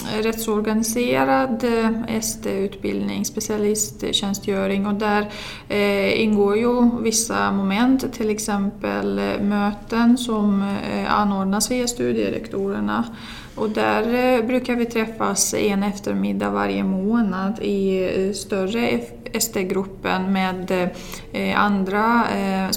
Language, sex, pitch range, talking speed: Finnish, female, 195-220 Hz, 100 wpm